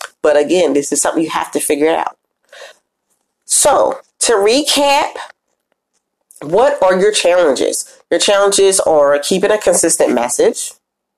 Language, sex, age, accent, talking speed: English, female, 40-59, American, 130 wpm